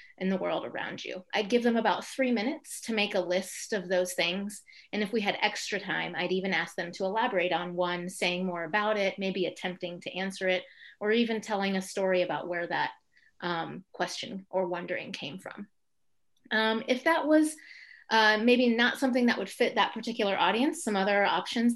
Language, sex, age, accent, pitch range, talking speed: English, female, 30-49, American, 185-240 Hz, 200 wpm